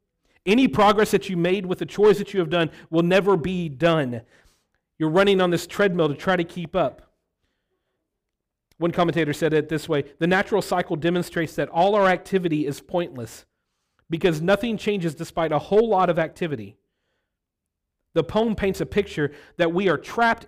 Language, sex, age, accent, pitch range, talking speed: English, male, 40-59, American, 125-175 Hz, 175 wpm